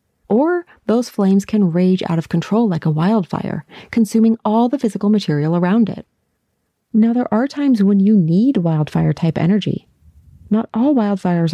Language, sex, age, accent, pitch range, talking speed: English, female, 30-49, American, 180-235 Hz, 155 wpm